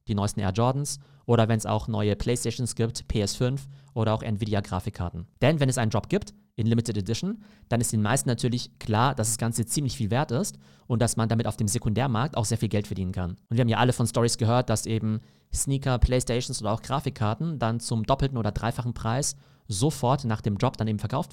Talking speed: 220 wpm